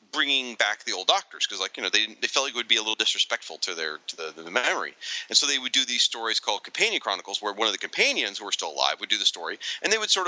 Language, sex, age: English, male, 30-49